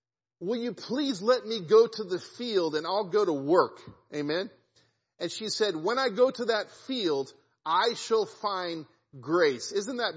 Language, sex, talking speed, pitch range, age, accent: English, male, 175 wpm, 155-205 Hz, 40-59, American